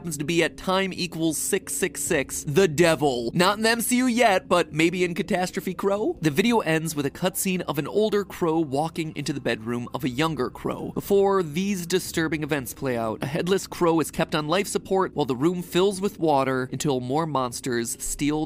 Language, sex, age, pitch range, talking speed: English, male, 30-49, 140-185 Hz, 200 wpm